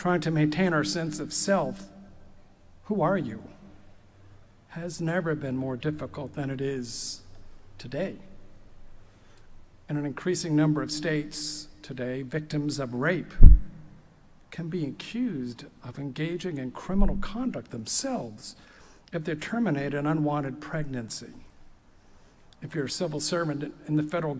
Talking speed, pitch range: 130 wpm, 125-170 Hz